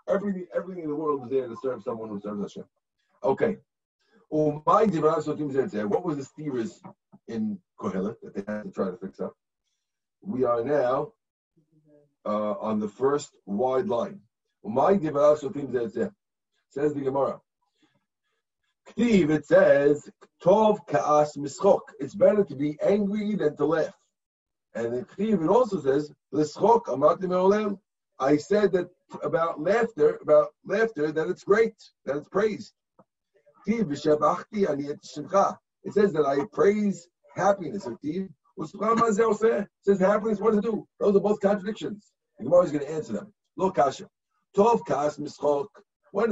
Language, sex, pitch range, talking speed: English, male, 145-205 Hz, 125 wpm